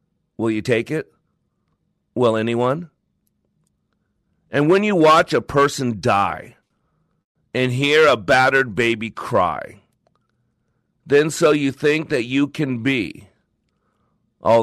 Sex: male